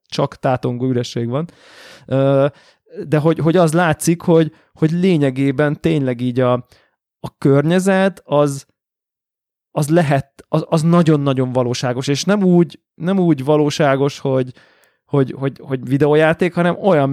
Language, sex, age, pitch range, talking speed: Hungarian, male, 20-39, 130-160 Hz, 130 wpm